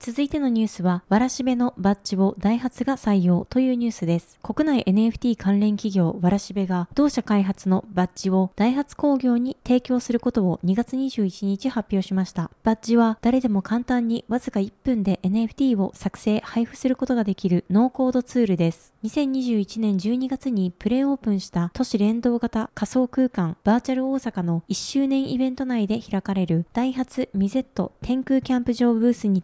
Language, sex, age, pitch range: Japanese, female, 20-39, 195-255 Hz